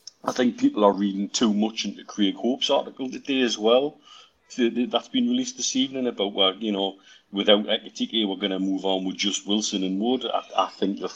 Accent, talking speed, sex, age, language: British, 205 wpm, male, 40-59, English